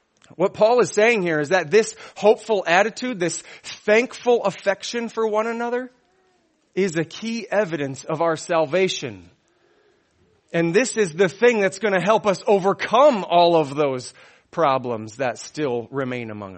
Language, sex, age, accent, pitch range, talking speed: English, male, 30-49, American, 135-200 Hz, 150 wpm